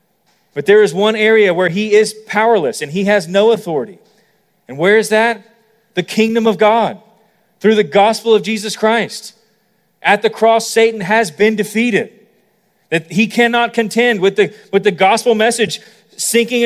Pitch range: 205-250 Hz